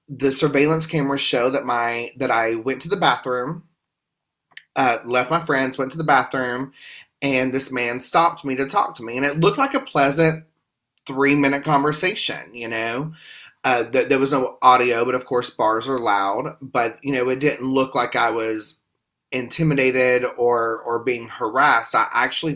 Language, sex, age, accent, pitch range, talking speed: English, male, 30-49, American, 115-140 Hz, 180 wpm